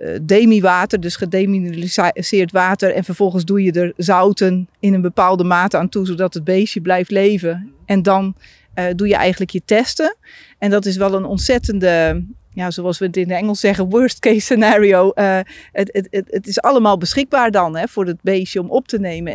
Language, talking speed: Dutch, 200 wpm